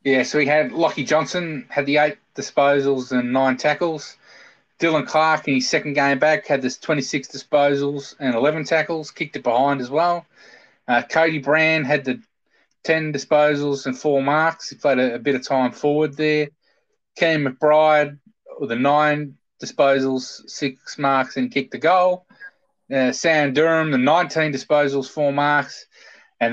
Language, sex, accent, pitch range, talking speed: English, male, Australian, 130-155 Hz, 165 wpm